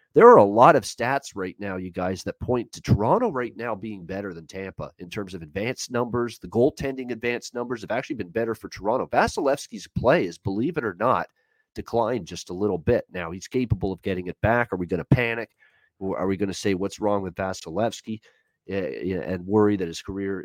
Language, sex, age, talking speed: English, male, 40-59, 215 wpm